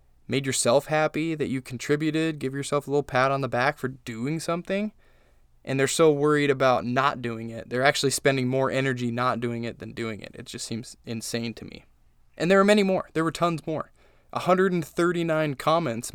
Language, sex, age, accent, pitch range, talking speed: English, male, 20-39, American, 120-150 Hz, 195 wpm